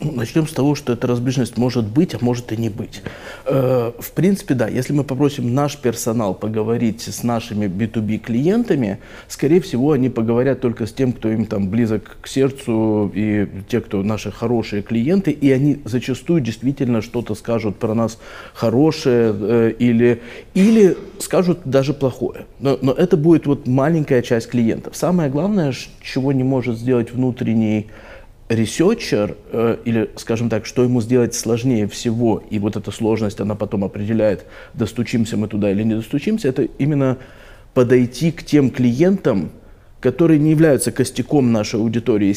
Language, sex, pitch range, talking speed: Ukrainian, male, 110-135 Hz, 155 wpm